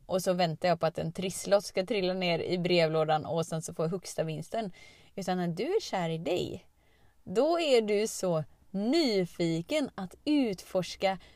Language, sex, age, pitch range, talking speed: Swedish, female, 20-39, 185-250 Hz, 180 wpm